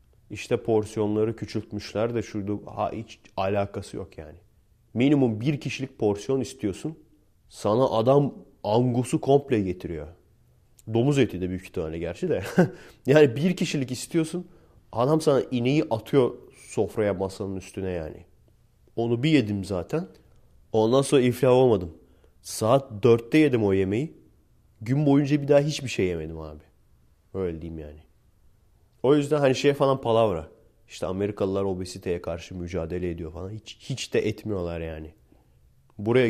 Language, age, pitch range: Turkish, 30-49, 95-135 Hz